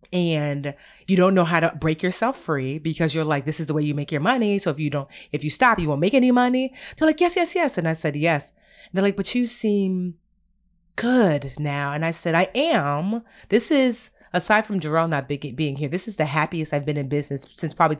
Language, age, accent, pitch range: English, 30-49, American, 150-200 Hz